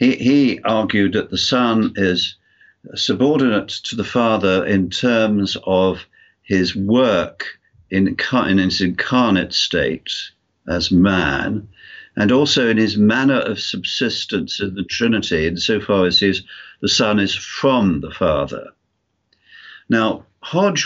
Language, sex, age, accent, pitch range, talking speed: English, male, 50-69, British, 95-115 Hz, 130 wpm